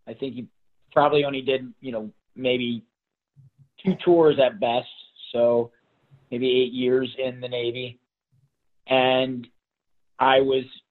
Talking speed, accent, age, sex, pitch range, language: 125 wpm, American, 30-49, male, 120-135 Hz, English